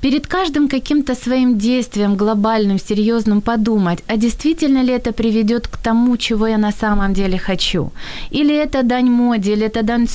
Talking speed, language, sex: 165 wpm, Ukrainian, female